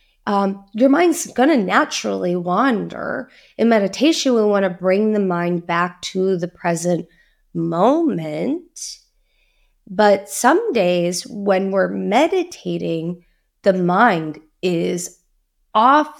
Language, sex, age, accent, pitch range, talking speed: English, female, 20-39, American, 180-255 Hz, 110 wpm